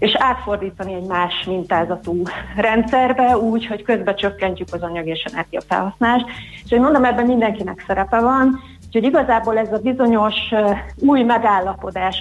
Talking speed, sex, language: 140 wpm, female, Hungarian